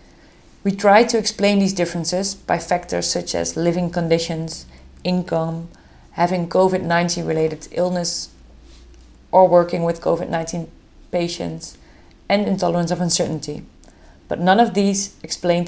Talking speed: 120 wpm